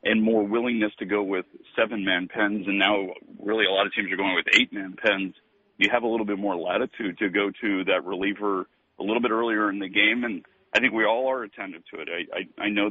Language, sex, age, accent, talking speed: English, male, 40-59, American, 235 wpm